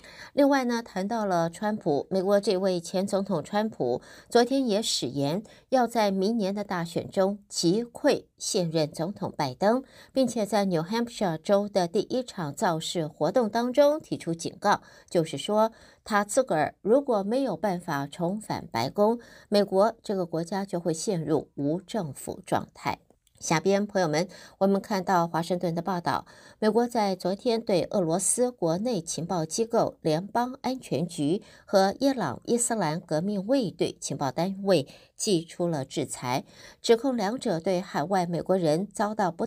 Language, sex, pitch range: Chinese, female, 165-220 Hz